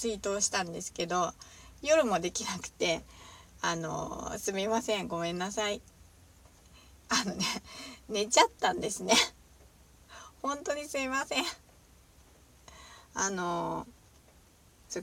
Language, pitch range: Japanese, 170-230 Hz